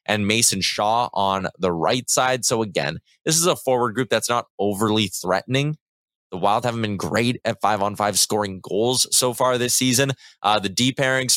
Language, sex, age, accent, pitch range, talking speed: English, male, 20-39, American, 100-130 Hz, 195 wpm